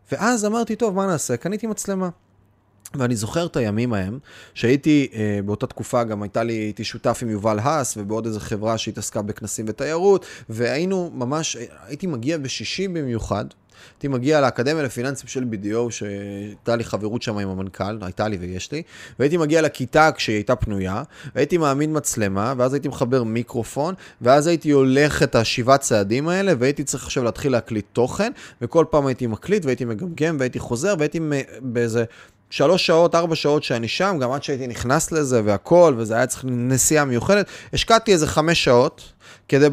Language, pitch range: Hebrew, 115-155 Hz